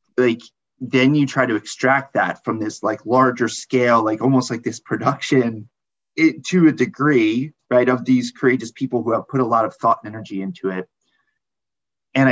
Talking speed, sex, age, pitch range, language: 185 wpm, male, 30-49, 115-170 Hz, English